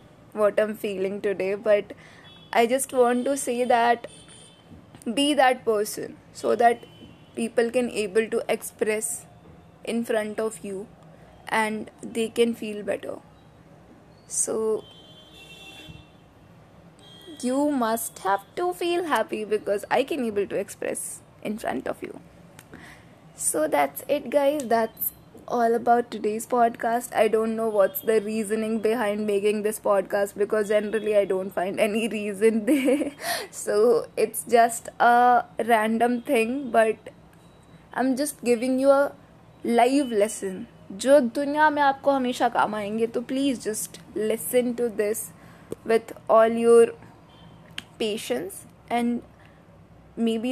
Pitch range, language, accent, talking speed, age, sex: 215-255 Hz, Hindi, native, 125 wpm, 20-39, female